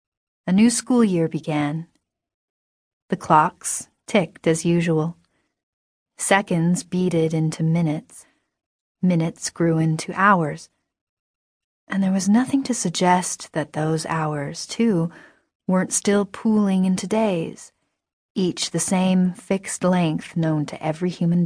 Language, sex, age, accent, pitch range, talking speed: English, female, 30-49, American, 160-190 Hz, 115 wpm